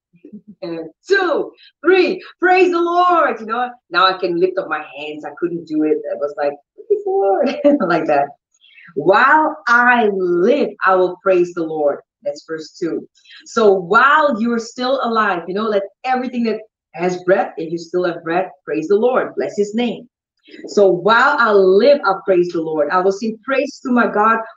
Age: 30-49